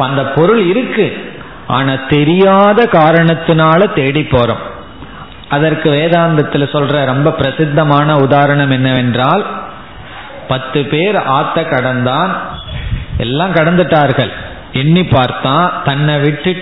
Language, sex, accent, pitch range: Tamil, male, native, 135-180 Hz